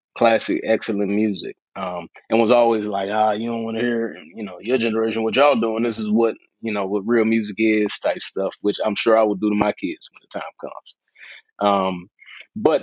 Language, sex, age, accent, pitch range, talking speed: English, male, 20-39, American, 110-130 Hz, 220 wpm